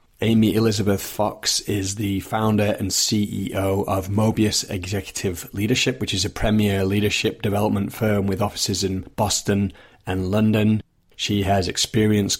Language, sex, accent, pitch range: English, male, British, 100-110 Hz